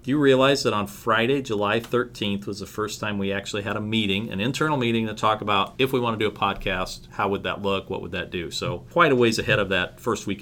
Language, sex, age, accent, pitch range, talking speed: English, male, 40-59, American, 105-135 Hz, 265 wpm